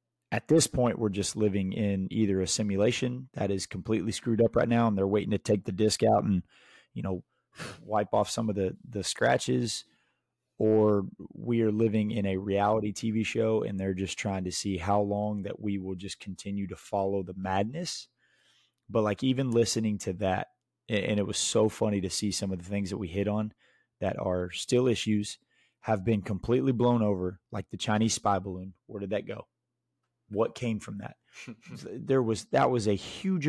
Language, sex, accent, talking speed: English, male, American, 195 wpm